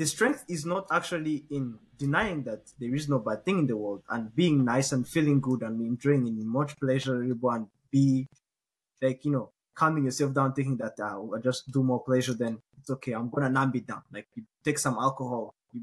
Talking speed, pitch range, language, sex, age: 230 wpm, 130-170 Hz, English, male, 20-39